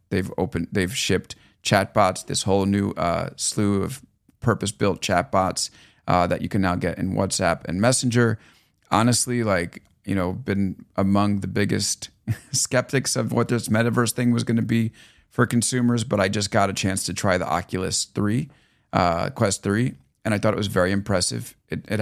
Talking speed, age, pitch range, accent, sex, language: 185 wpm, 30-49, 95-115 Hz, American, male, English